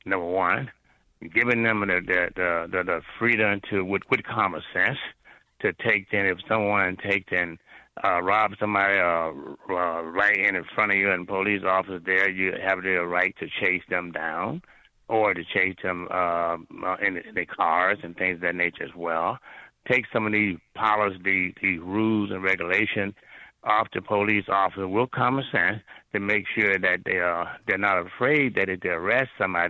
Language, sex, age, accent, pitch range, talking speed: English, male, 60-79, American, 95-110 Hz, 180 wpm